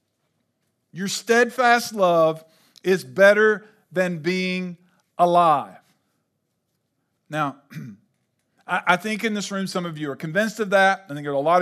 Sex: male